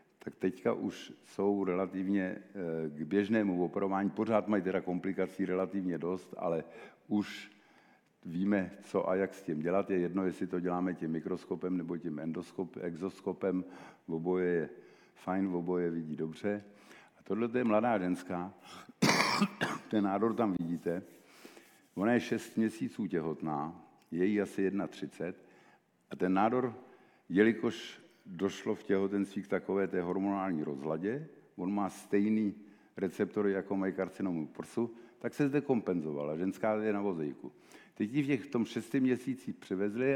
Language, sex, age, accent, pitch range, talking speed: Czech, male, 60-79, native, 90-110 Hz, 145 wpm